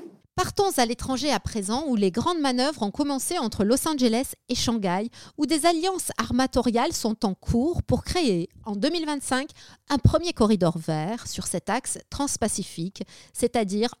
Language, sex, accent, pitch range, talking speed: French, female, French, 210-270 Hz, 155 wpm